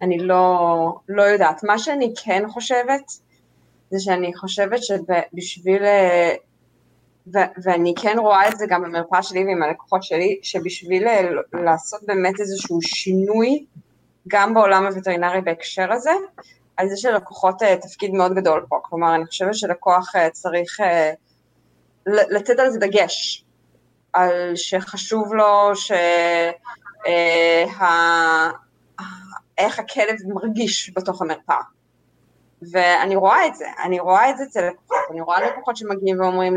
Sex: female